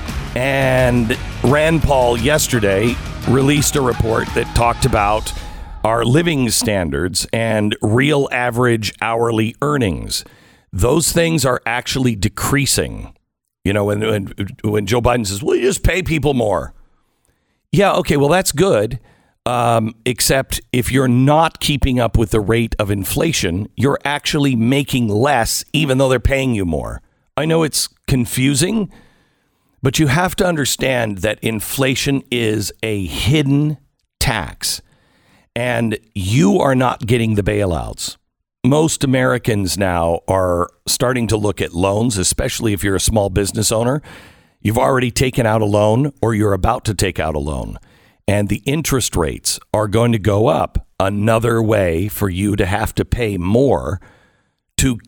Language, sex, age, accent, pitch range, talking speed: English, male, 50-69, American, 105-135 Hz, 145 wpm